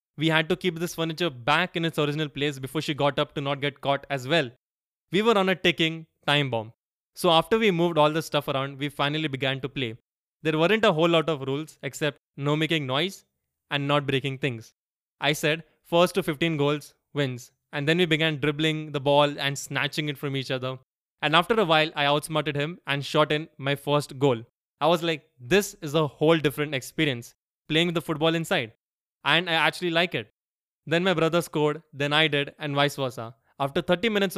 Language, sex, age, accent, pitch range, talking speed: English, male, 20-39, Indian, 140-165 Hz, 210 wpm